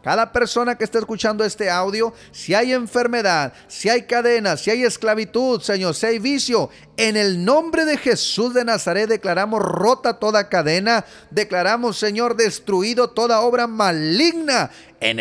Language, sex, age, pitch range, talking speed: Spanish, male, 40-59, 185-235 Hz, 150 wpm